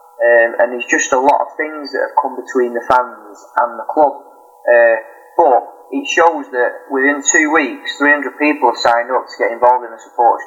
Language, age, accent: English, 30-49, British